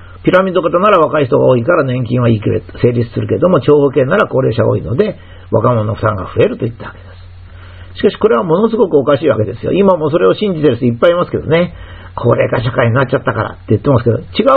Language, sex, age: Japanese, male, 50-69